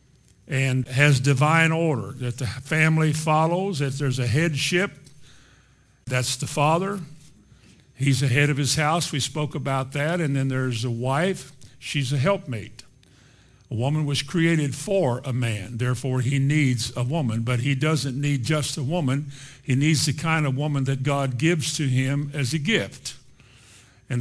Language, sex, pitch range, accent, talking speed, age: English, male, 125-145 Hz, American, 165 wpm, 50-69